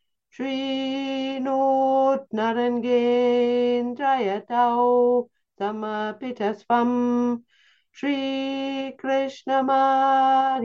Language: English